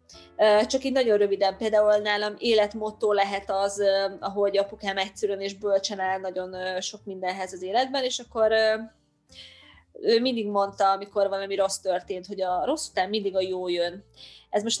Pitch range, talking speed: 200-245 Hz, 155 wpm